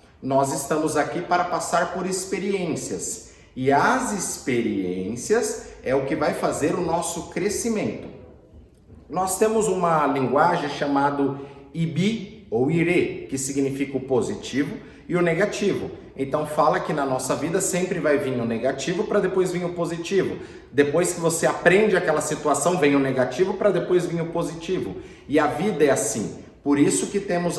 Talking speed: 155 wpm